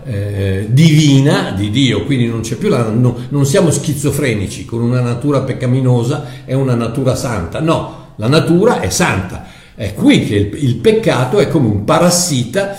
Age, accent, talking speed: 60-79, native, 170 wpm